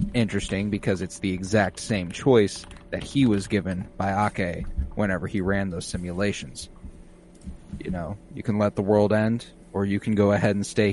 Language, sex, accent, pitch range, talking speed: English, male, American, 95-120 Hz, 180 wpm